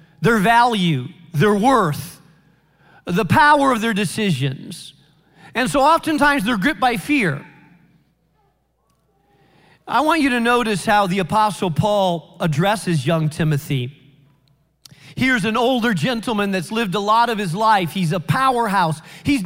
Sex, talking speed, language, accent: male, 135 wpm, English, American